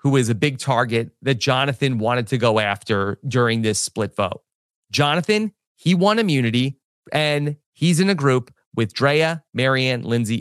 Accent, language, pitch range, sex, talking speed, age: American, English, 125-165 Hz, male, 160 wpm, 30-49